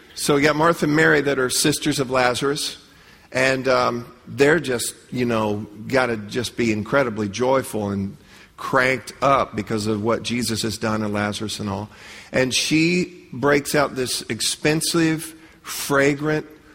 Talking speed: 155 wpm